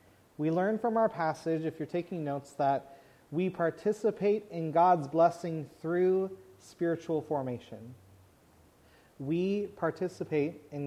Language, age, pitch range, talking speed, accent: English, 30-49, 140-185 Hz, 115 wpm, American